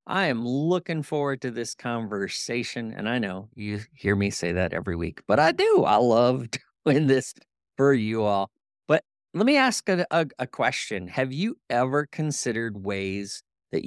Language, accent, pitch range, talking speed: English, American, 100-135 Hz, 175 wpm